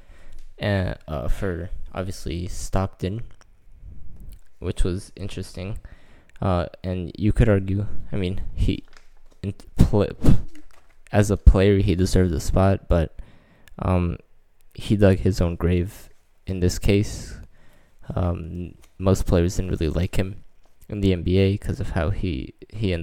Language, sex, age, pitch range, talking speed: English, male, 20-39, 85-95 Hz, 130 wpm